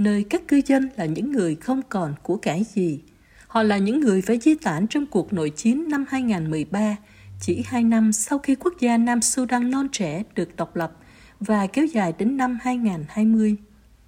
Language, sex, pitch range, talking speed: Vietnamese, female, 195-250 Hz, 190 wpm